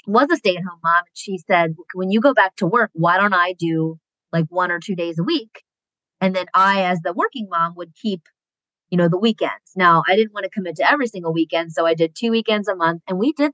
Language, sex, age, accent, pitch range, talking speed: English, female, 20-39, American, 170-215 Hz, 255 wpm